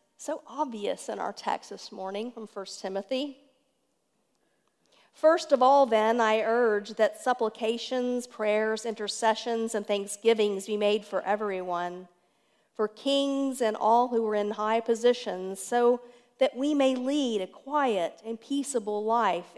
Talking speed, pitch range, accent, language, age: 140 wpm, 200-250 Hz, American, English, 50-69